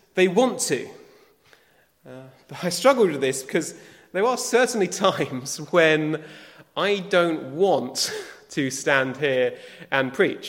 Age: 30-49